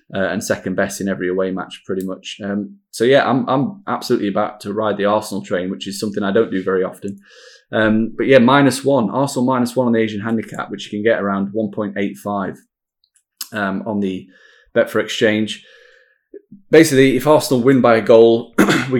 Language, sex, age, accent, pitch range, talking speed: English, male, 20-39, British, 100-115 Hz, 195 wpm